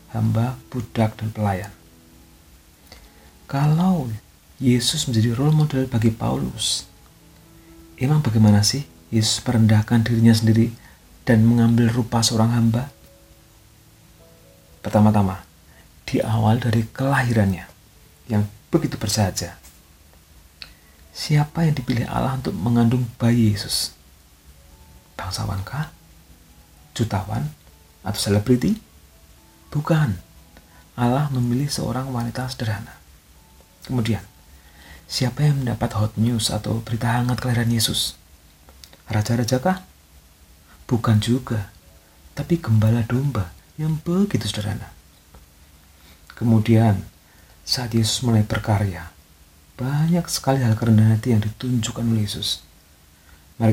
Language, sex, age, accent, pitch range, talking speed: Indonesian, male, 40-59, native, 80-120 Hz, 95 wpm